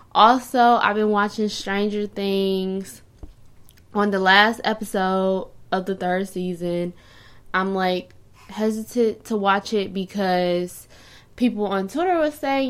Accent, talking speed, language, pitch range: American, 125 wpm, English, 175-215 Hz